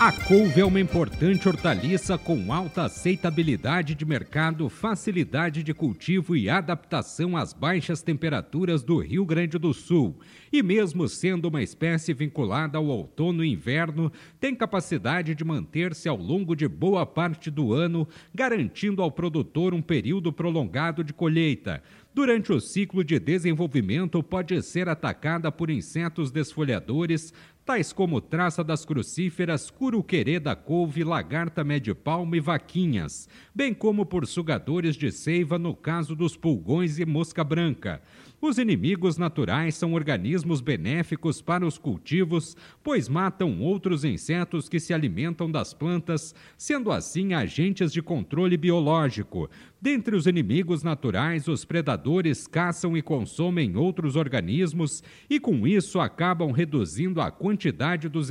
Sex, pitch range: male, 155-180 Hz